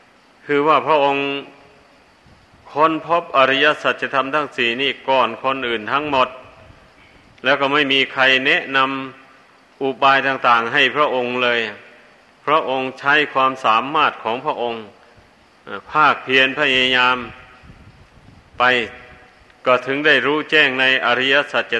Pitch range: 125-140 Hz